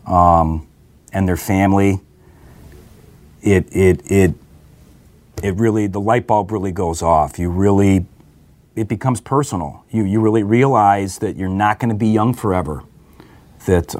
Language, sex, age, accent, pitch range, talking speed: English, male, 40-59, American, 95-115 Hz, 140 wpm